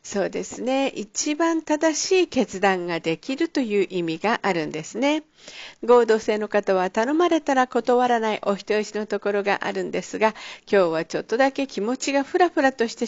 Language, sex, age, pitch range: Japanese, female, 50-69, 200-275 Hz